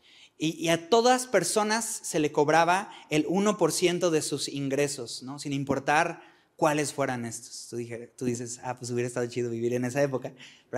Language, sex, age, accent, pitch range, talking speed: Spanish, male, 30-49, Mexican, 145-190 Hz, 180 wpm